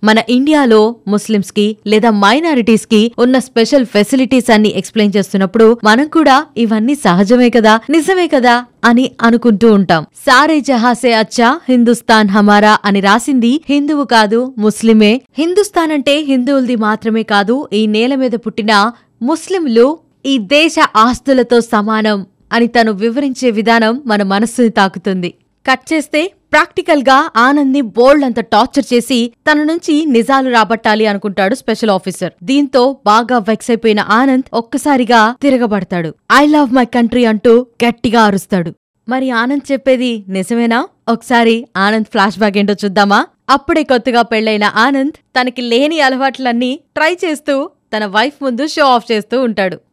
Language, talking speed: Telugu, 135 wpm